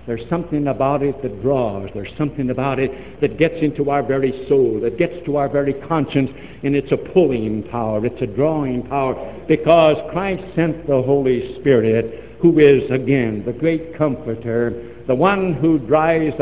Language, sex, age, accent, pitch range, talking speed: English, male, 60-79, American, 135-175 Hz, 170 wpm